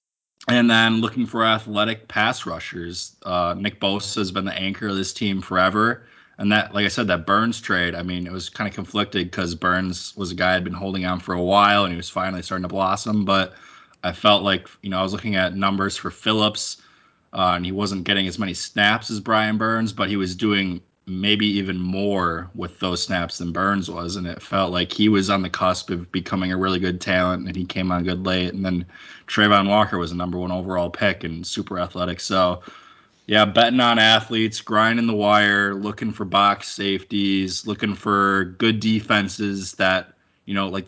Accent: American